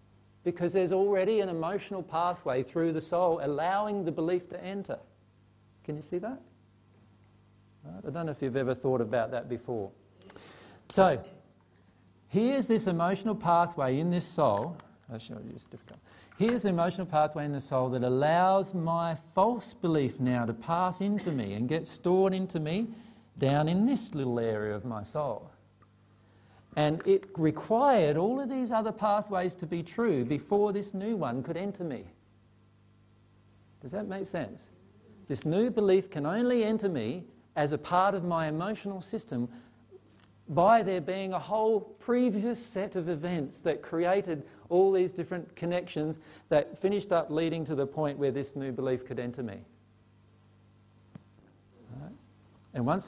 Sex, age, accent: male, 50-69, Australian